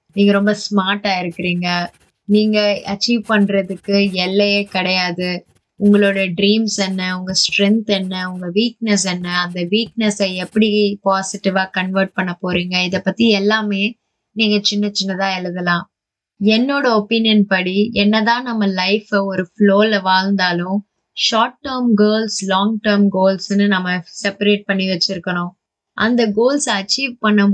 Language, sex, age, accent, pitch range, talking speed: Tamil, female, 20-39, native, 185-215 Hz, 120 wpm